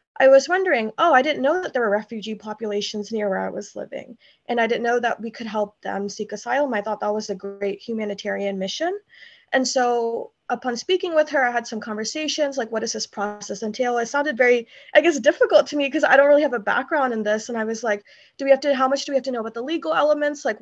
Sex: female